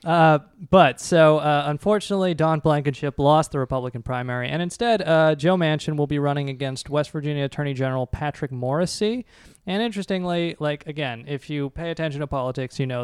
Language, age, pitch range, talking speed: English, 20-39, 130-160 Hz, 175 wpm